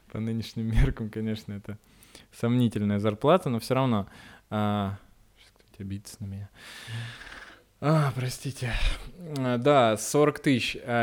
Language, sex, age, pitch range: Russian, male, 20-39, 110-135 Hz